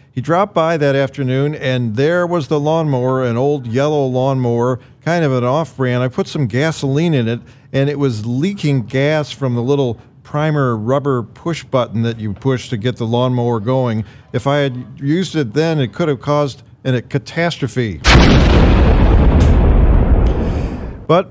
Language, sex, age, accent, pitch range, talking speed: English, male, 50-69, American, 125-155 Hz, 165 wpm